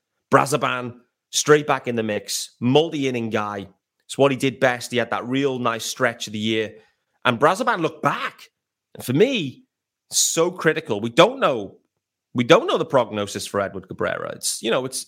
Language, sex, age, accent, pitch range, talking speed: English, male, 30-49, British, 115-160 Hz, 185 wpm